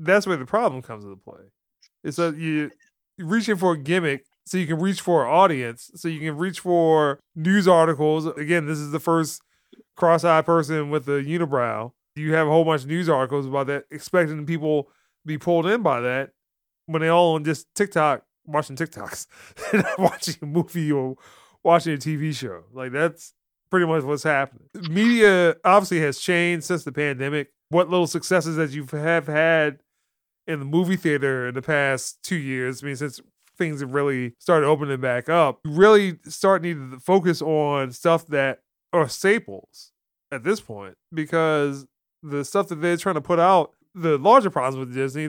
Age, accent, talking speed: 30-49, American, 185 wpm